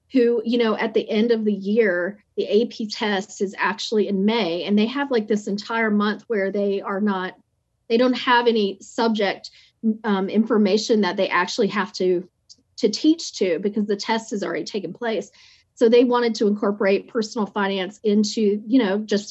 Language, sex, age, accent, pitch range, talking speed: English, female, 40-59, American, 195-230 Hz, 185 wpm